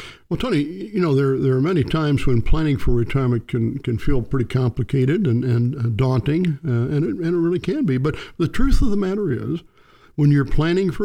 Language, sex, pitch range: English, male, 125-160 Hz